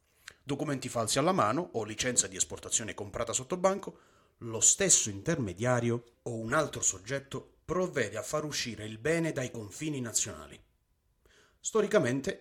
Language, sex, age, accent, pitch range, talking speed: Italian, male, 30-49, native, 105-150 Hz, 135 wpm